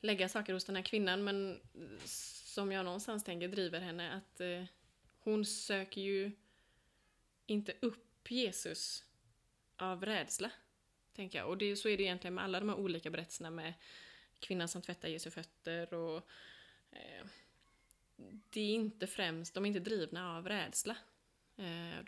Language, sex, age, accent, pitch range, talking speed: Swedish, female, 20-39, native, 175-210 Hz, 150 wpm